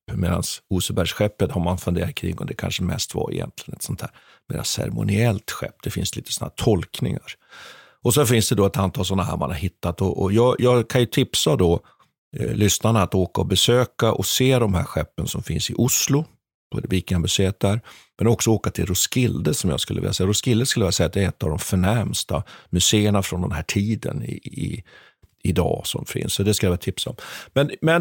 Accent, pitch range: native, 95-130 Hz